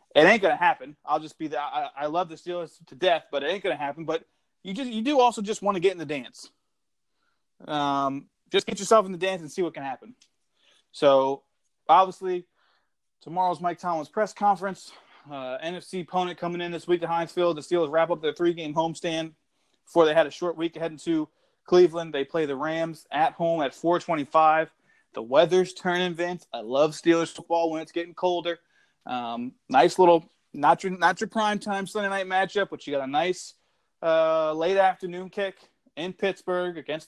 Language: English